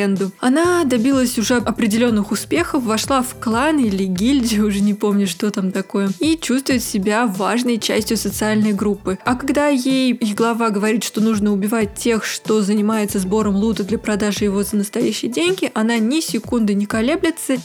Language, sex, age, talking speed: Russian, female, 20-39, 160 wpm